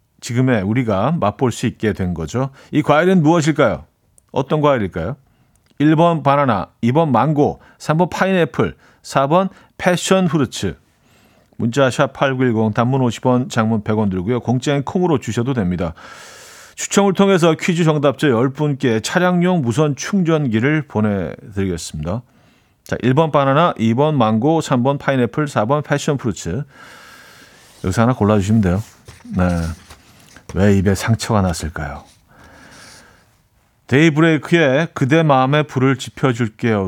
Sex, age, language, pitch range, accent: male, 40-59, Korean, 105-150 Hz, native